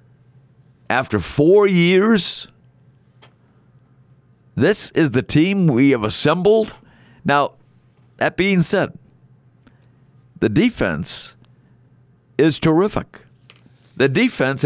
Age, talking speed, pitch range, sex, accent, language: 60-79, 80 wpm, 125-165 Hz, male, American, English